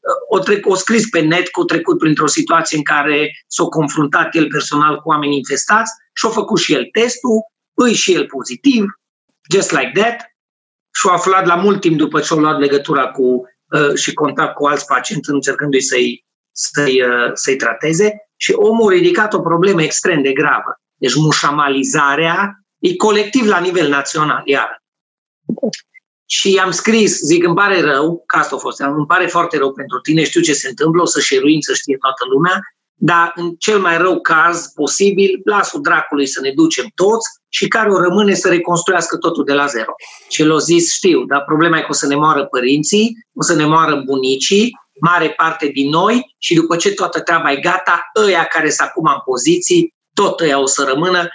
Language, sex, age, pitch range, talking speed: Romanian, male, 30-49, 150-210 Hz, 190 wpm